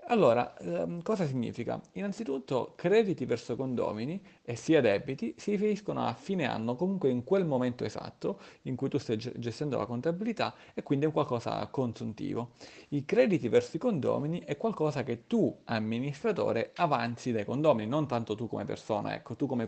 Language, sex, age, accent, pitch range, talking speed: Italian, male, 40-59, native, 115-165 Hz, 160 wpm